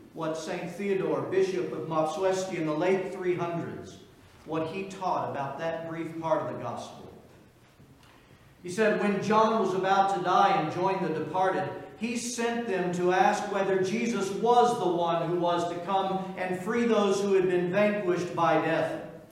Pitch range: 170-210 Hz